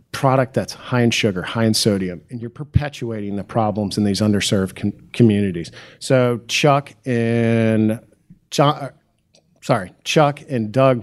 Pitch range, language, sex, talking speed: 110-130 Hz, English, male, 145 wpm